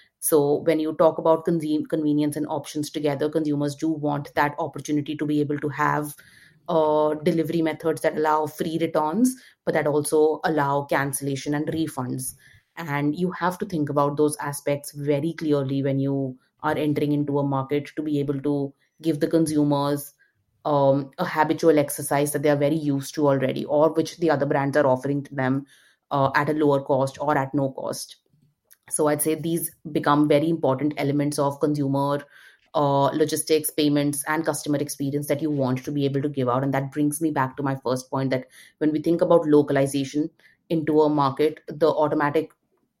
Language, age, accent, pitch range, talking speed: Danish, 30-49, Indian, 140-155 Hz, 185 wpm